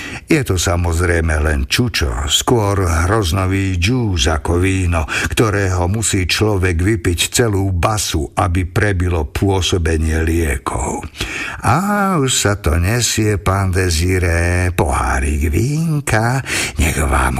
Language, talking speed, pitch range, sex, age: Slovak, 105 wpm, 85-105 Hz, male, 60-79